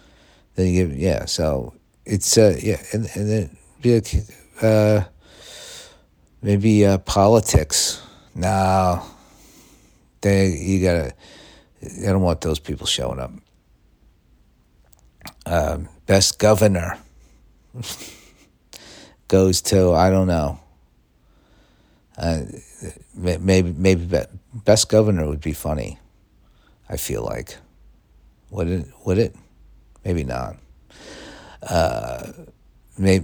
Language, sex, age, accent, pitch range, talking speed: English, male, 50-69, American, 75-100 Hz, 95 wpm